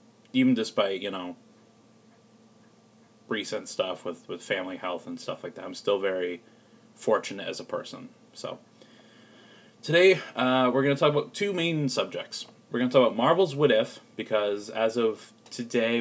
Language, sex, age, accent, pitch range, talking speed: English, male, 20-39, American, 110-155 Hz, 165 wpm